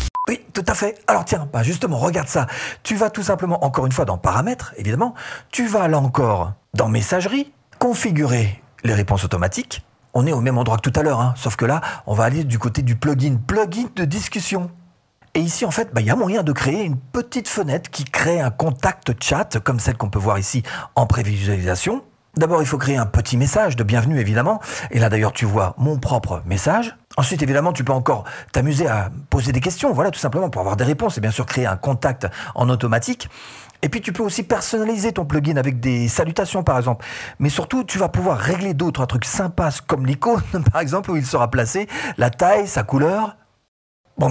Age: 40-59